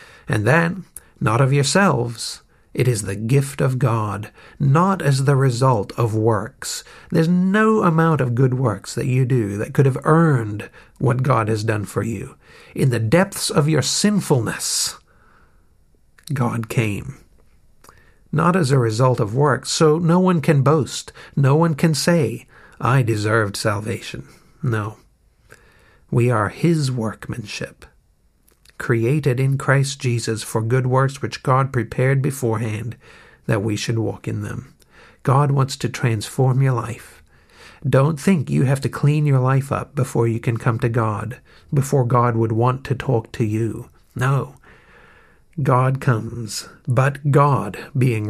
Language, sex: English, male